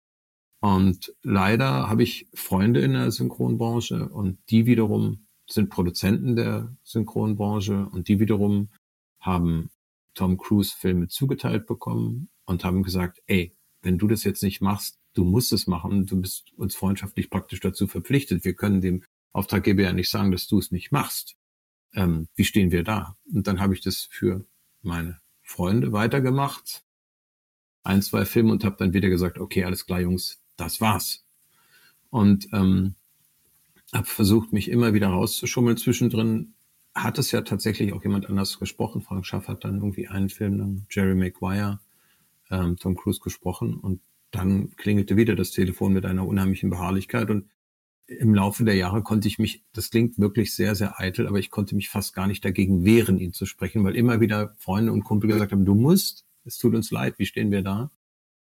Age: 40-59